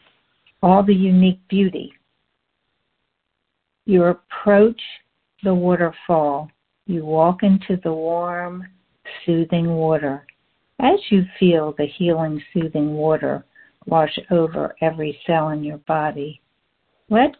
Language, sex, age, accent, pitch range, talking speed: English, female, 60-79, American, 155-190 Hz, 105 wpm